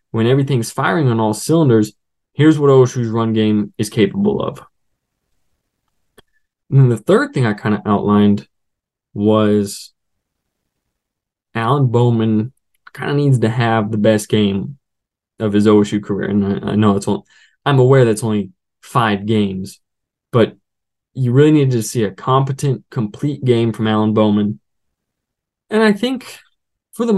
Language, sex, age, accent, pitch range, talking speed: English, male, 20-39, American, 105-150 Hz, 150 wpm